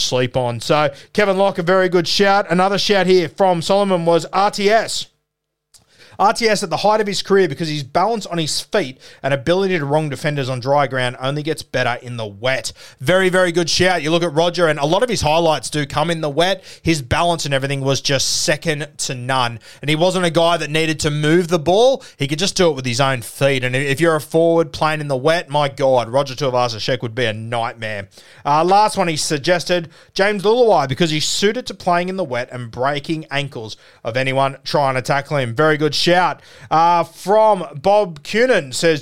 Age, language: 30-49, English